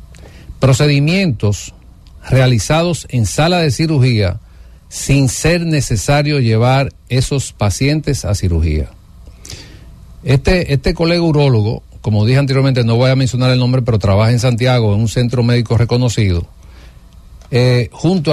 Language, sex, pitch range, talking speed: English, male, 100-140 Hz, 125 wpm